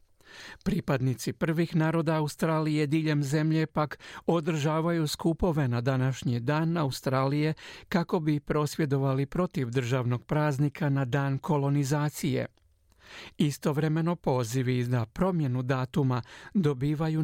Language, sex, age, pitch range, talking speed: Croatian, male, 60-79, 135-160 Hz, 95 wpm